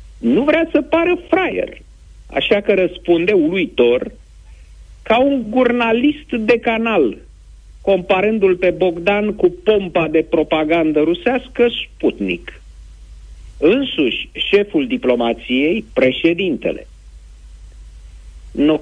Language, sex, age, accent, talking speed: Romanian, male, 50-69, native, 90 wpm